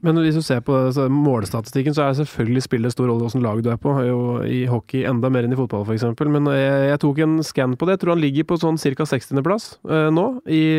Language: English